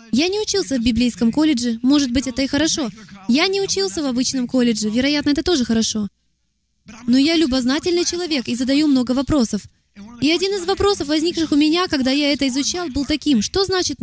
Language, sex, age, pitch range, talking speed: Russian, female, 20-39, 235-325 Hz, 190 wpm